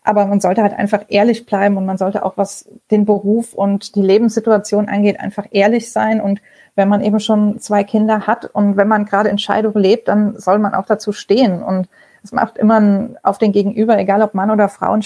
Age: 30-49